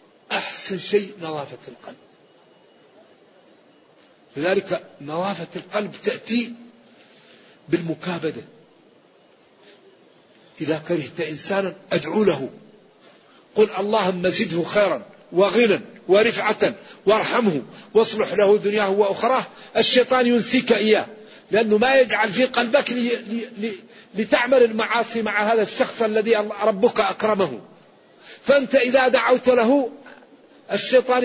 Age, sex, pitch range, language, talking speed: 50-69, male, 200-240 Hz, Arabic, 90 wpm